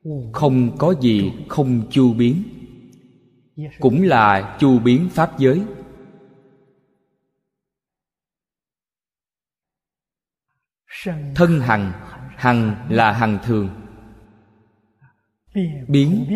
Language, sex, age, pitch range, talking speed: Vietnamese, male, 20-39, 105-160 Hz, 70 wpm